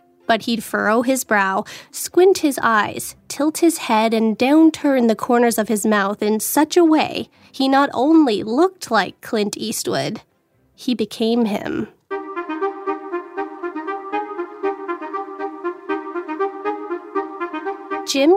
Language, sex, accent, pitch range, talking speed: English, female, American, 225-325 Hz, 110 wpm